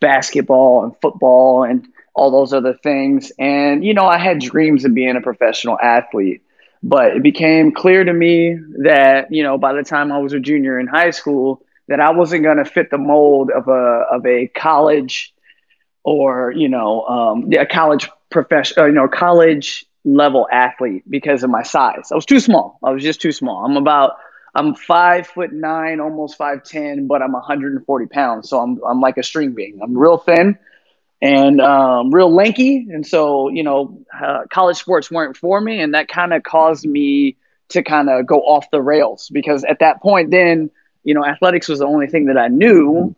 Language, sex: English, male